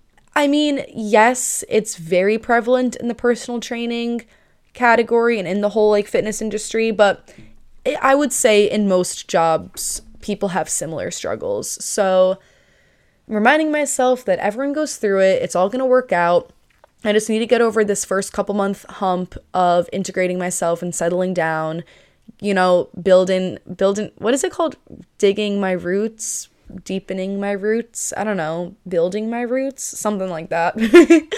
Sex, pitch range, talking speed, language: female, 185-240 Hz, 160 wpm, English